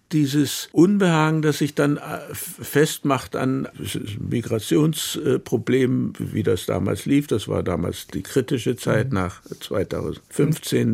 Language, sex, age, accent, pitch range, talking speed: German, male, 60-79, German, 115-155 Hz, 110 wpm